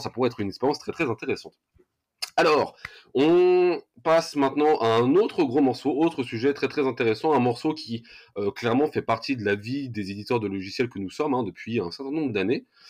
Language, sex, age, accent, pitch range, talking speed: French, male, 20-39, French, 110-135 Hz, 210 wpm